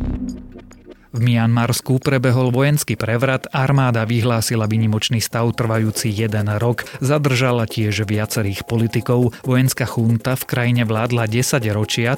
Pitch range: 110-130 Hz